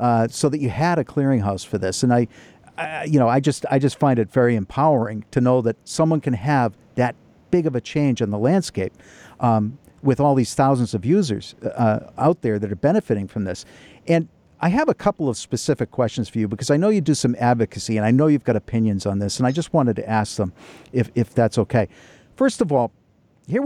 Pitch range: 110-135 Hz